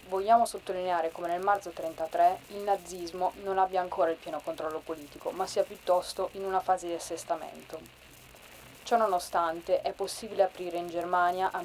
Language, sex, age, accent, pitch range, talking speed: Italian, female, 20-39, native, 170-195 Hz, 160 wpm